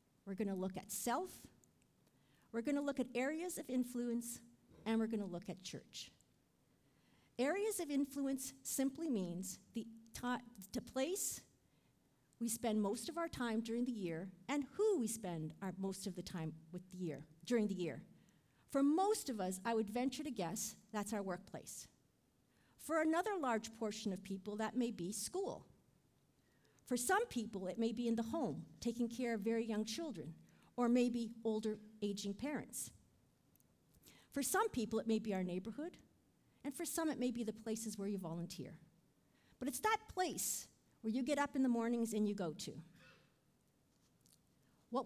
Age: 50-69